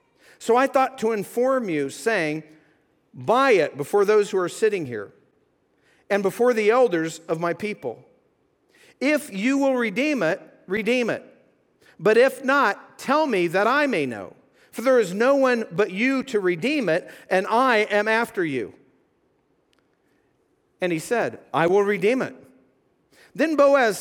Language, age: English, 50-69